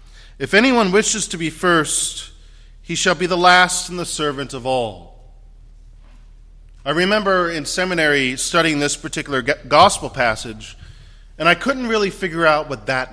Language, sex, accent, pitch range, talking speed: English, male, American, 110-170 Hz, 150 wpm